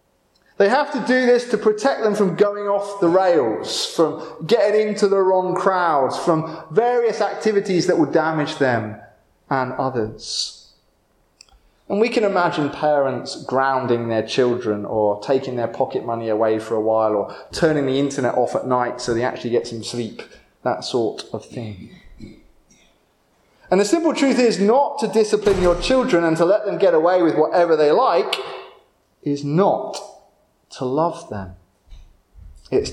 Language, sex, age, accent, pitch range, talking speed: English, male, 20-39, British, 120-200 Hz, 160 wpm